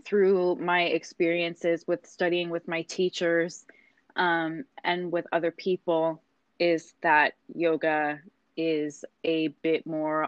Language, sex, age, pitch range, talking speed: English, female, 20-39, 160-185 Hz, 115 wpm